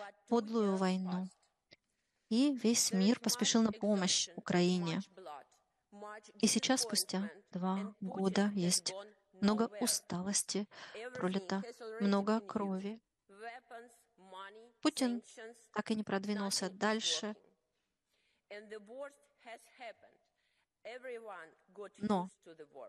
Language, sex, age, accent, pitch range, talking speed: Russian, female, 30-49, native, 195-230 Hz, 70 wpm